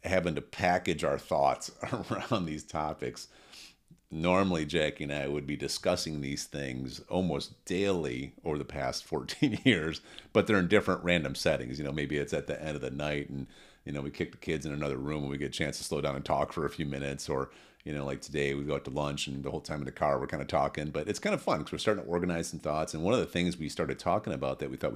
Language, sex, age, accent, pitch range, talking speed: English, male, 40-59, American, 70-90 Hz, 260 wpm